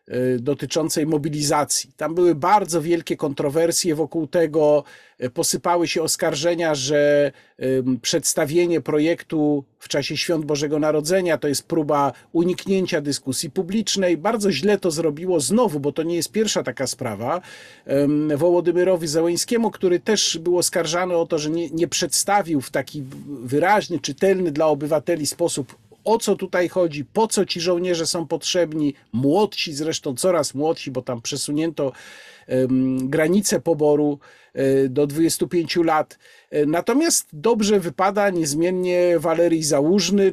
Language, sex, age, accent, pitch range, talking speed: Polish, male, 50-69, native, 150-185 Hz, 125 wpm